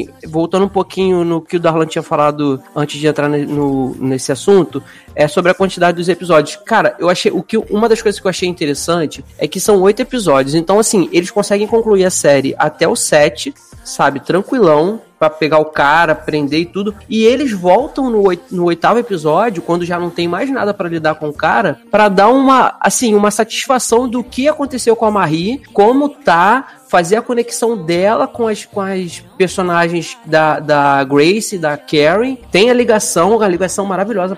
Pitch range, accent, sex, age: 165-225 Hz, Brazilian, male, 20-39